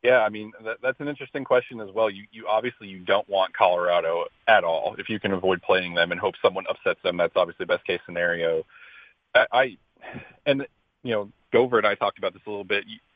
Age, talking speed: 40-59, 225 wpm